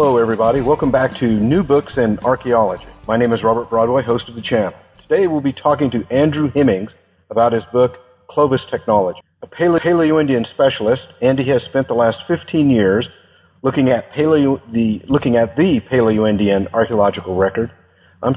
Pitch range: 105-135 Hz